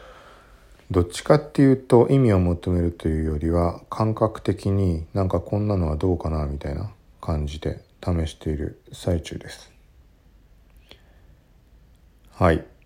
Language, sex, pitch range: Japanese, male, 80-100 Hz